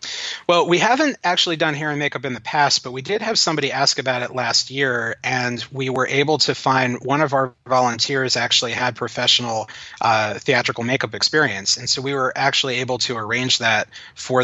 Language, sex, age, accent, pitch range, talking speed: English, male, 30-49, American, 115-135 Hz, 200 wpm